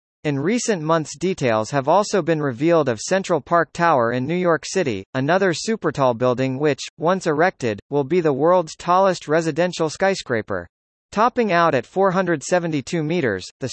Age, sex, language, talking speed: 40-59, male, English, 155 wpm